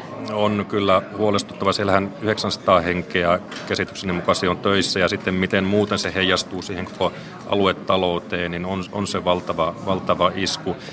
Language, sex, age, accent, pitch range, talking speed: Finnish, male, 40-59, native, 90-100 Hz, 145 wpm